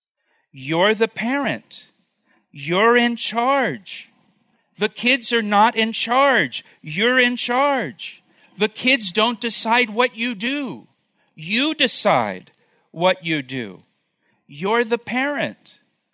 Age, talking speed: 40-59, 110 wpm